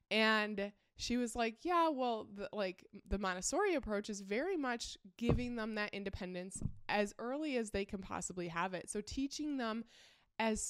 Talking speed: 165 wpm